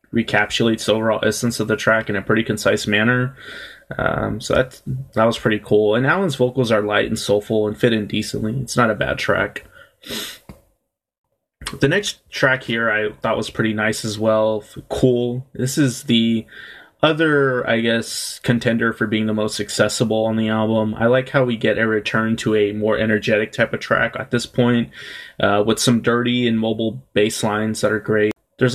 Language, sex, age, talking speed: English, male, 20-39, 190 wpm